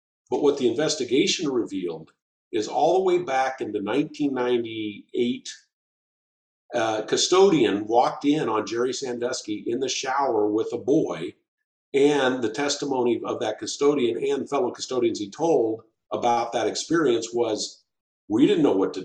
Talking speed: 140 wpm